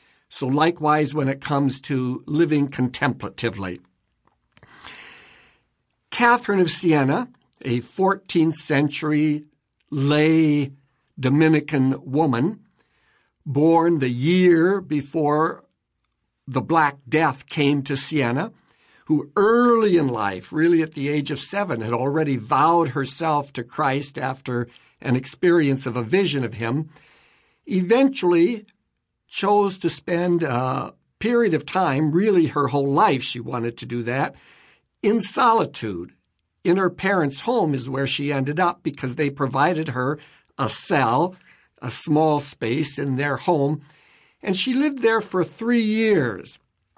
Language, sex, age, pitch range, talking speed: English, male, 60-79, 140-180 Hz, 125 wpm